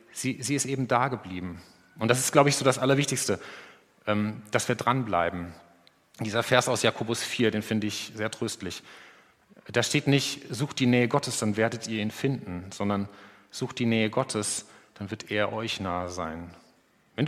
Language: German